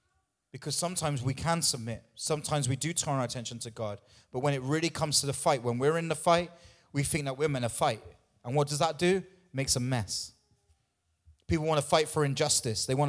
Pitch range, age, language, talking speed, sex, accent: 115-165 Hz, 30-49, English, 225 wpm, male, British